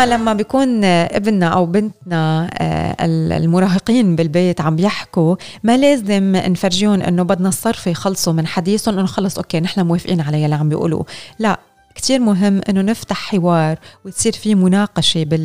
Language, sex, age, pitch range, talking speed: Arabic, female, 20-39, 170-210 Hz, 140 wpm